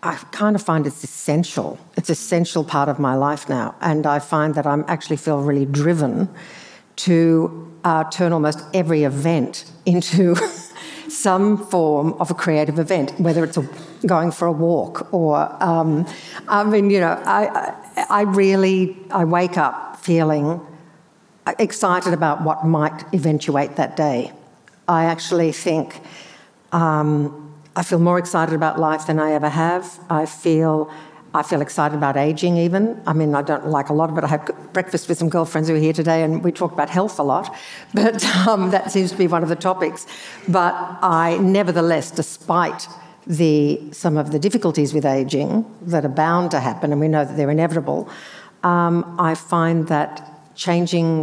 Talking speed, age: 175 wpm, 60-79